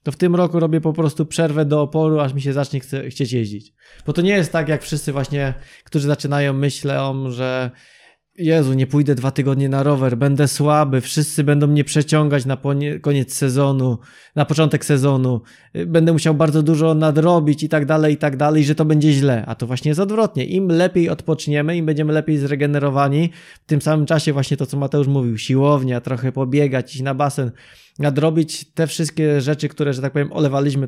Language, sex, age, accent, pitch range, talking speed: Polish, male, 20-39, native, 135-155 Hz, 190 wpm